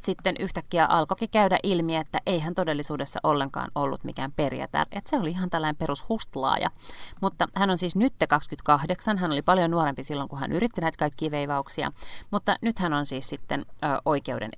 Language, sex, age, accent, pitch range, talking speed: Finnish, female, 30-49, native, 145-185 Hz, 185 wpm